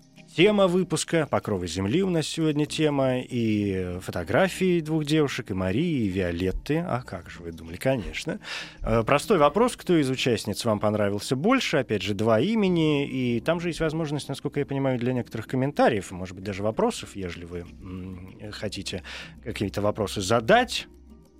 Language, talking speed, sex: Russian, 155 wpm, male